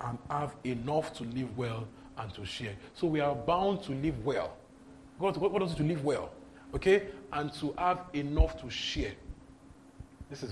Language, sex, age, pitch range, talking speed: English, male, 40-59, 125-180 Hz, 175 wpm